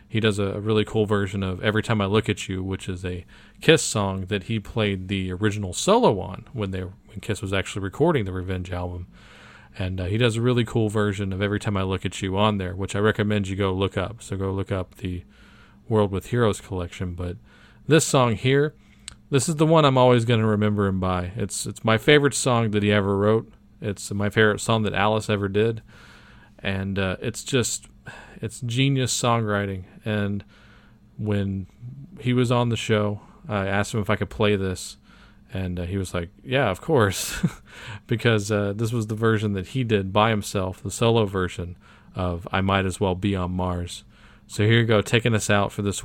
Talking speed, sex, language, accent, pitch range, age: 210 wpm, male, English, American, 95-110 Hz, 40-59